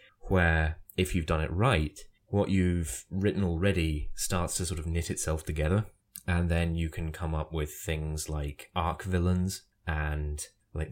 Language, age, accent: English, 20-39, British